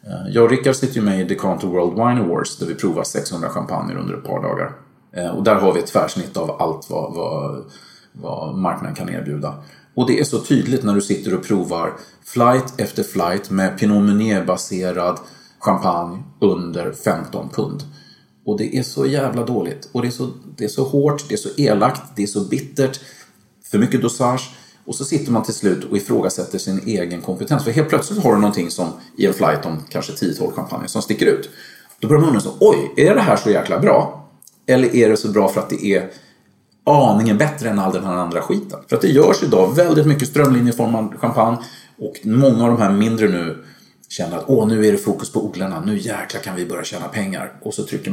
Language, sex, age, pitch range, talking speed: English, male, 30-49, 95-130 Hz, 210 wpm